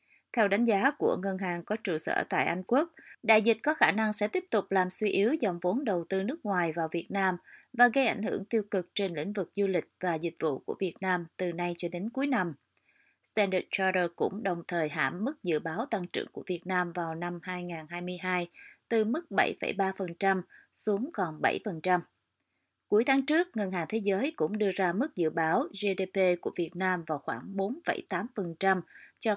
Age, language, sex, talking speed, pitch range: 20-39, Vietnamese, female, 200 wpm, 175-220 Hz